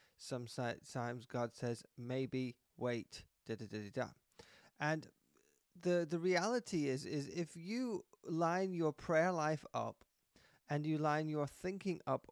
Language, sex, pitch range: English, male, 130-185 Hz